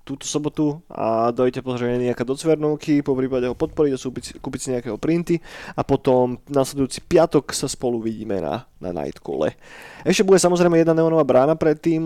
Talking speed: 170 wpm